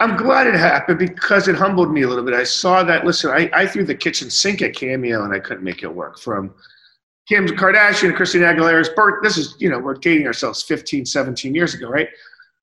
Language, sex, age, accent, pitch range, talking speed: English, male, 40-59, American, 130-175 Hz, 230 wpm